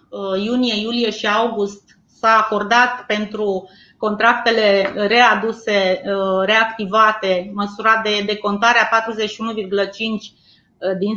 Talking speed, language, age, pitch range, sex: 85 wpm, Romanian, 30-49, 200-225 Hz, female